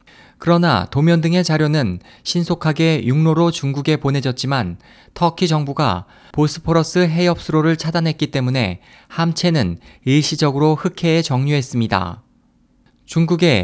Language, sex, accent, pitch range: Korean, male, native, 135-170 Hz